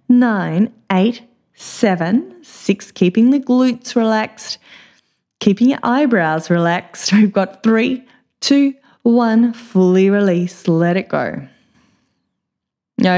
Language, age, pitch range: English, 20-39, 185-240 Hz